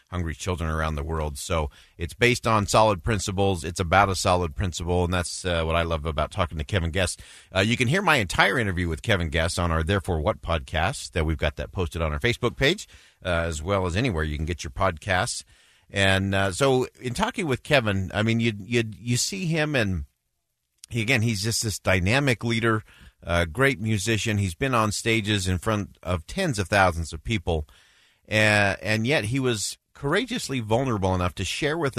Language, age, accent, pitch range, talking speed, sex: English, 40-59, American, 85-115 Hz, 205 wpm, male